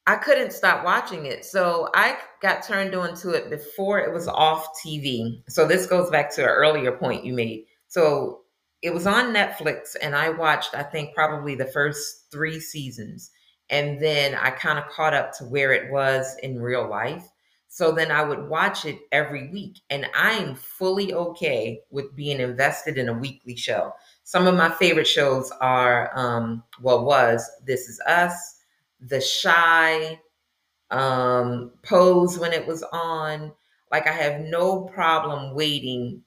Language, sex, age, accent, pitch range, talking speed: English, female, 30-49, American, 140-175 Hz, 165 wpm